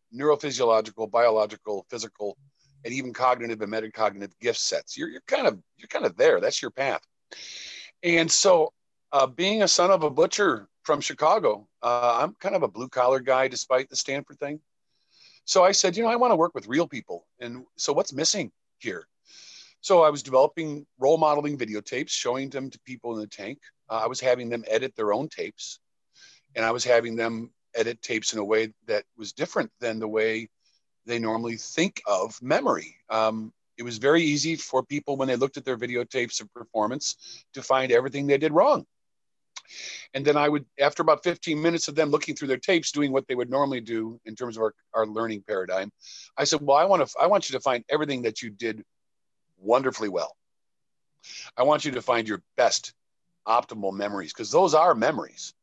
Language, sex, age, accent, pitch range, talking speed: English, male, 50-69, American, 110-145 Hz, 195 wpm